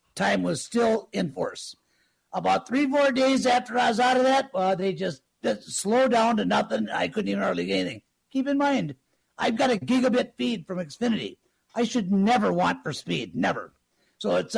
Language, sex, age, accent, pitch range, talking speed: English, male, 60-79, American, 220-260 Hz, 200 wpm